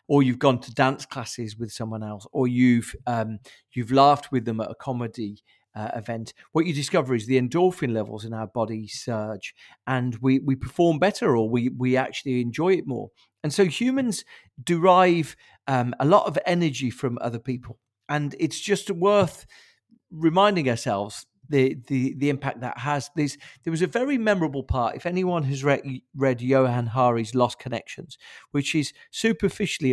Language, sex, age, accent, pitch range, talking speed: English, male, 40-59, British, 125-160 Hz, 170 wpm